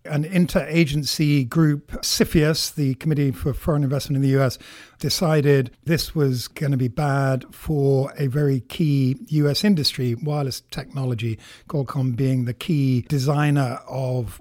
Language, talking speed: English, 135 wpm